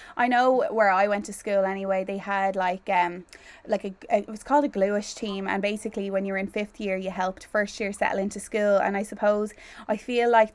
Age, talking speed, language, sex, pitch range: 20-39, 230 wpm, English, female, 195-225 Hz